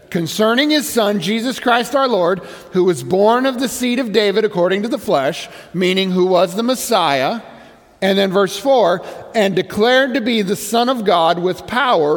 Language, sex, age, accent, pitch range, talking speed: English, male, 50-69, American, 180-240 Hz, 185 wpm